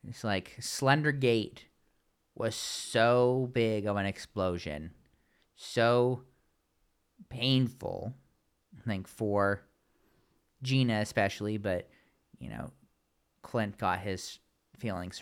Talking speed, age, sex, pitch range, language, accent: 95 wpm, 30-49, male, 95-125 Hz, English, American